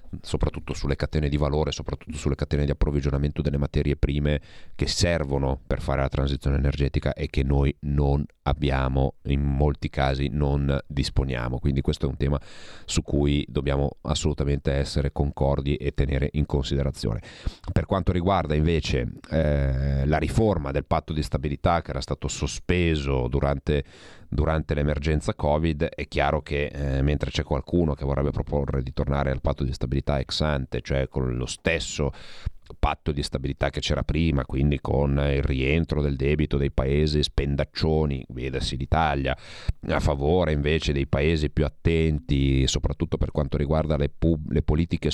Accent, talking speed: native, 155 wpm